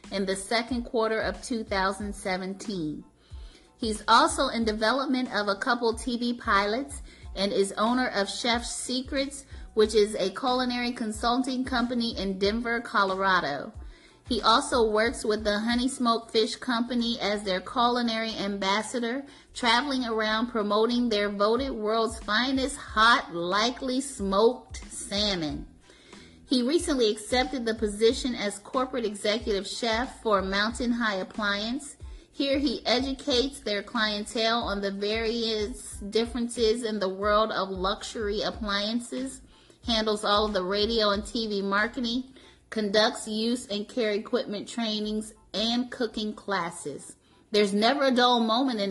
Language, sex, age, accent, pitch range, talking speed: English, female, 30-49, American, 205-245 Hz, 130 wpm